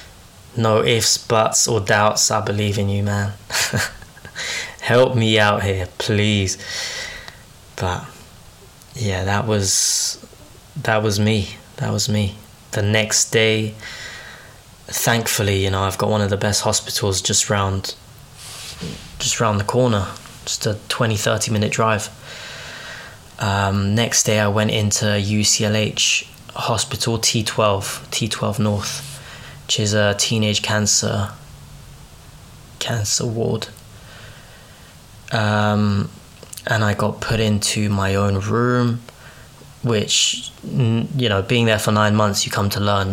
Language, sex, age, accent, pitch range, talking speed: English, male, 20-39, British, 100-115 Hz, 125 wpm